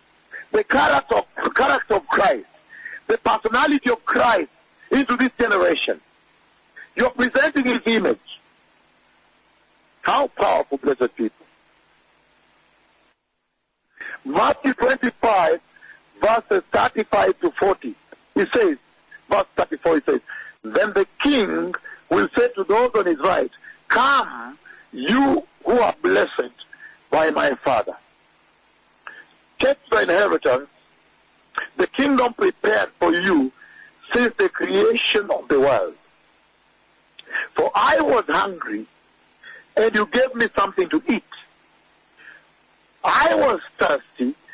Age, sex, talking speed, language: 60-79, male, 110 wpm, English